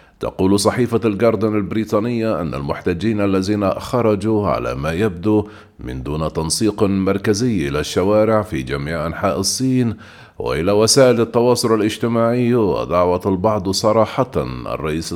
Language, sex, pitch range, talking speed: Arabic, male, 95-115 Hz, 115 wpm